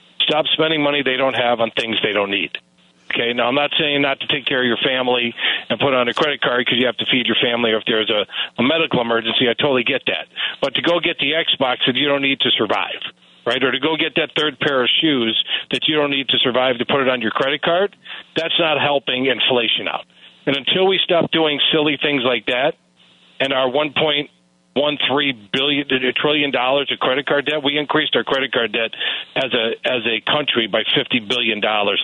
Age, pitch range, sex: 50-69, 115-150 Hz, male